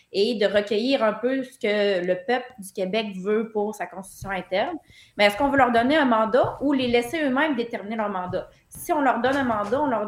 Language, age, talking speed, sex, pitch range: French, 20-39, 230 wpm, female, 215-280 Hz